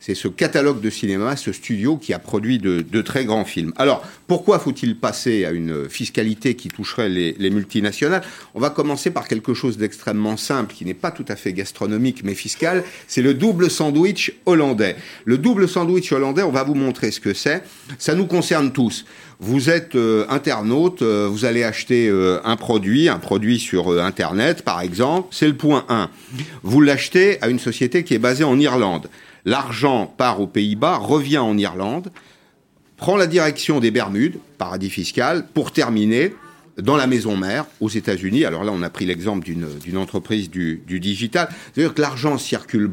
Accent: French